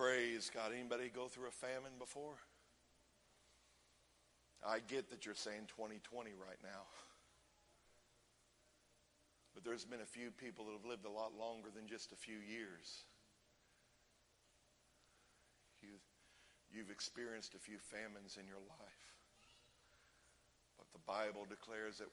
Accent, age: American, 50-69